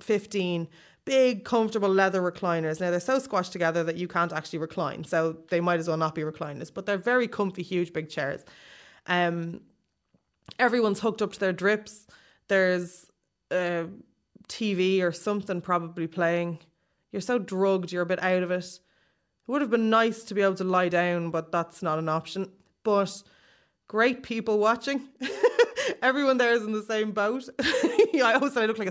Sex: female